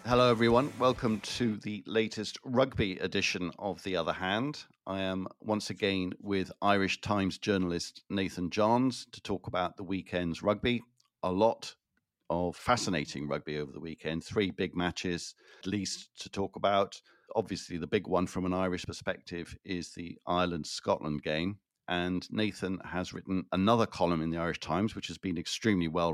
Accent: British